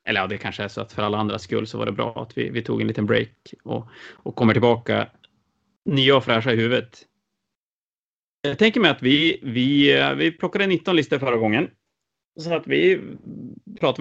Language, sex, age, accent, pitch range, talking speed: Swedish, male, 30-49, Norwegian, 110-150 Hz, 195 wpm